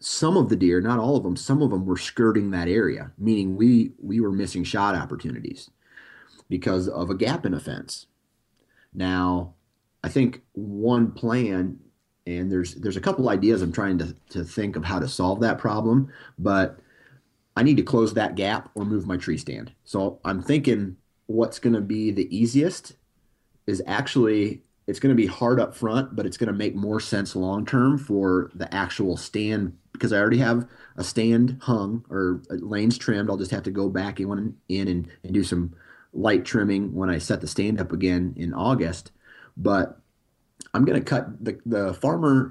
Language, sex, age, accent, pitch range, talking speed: English, male, 30-49, American, 90-115 Hz, 190 wpm